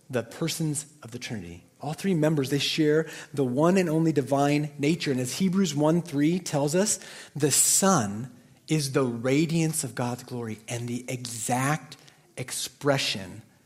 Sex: male